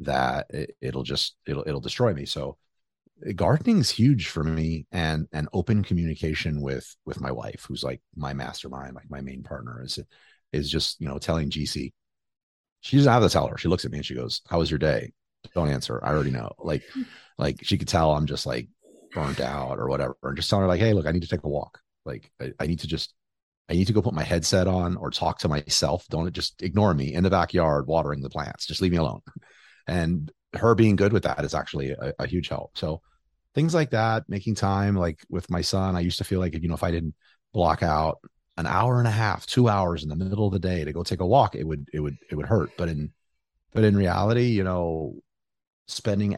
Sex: male